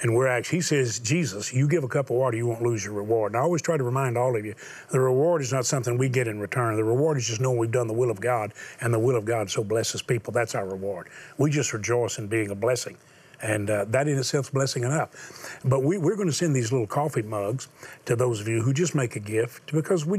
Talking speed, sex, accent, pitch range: 275 wpm, male, American, 115-145 Hz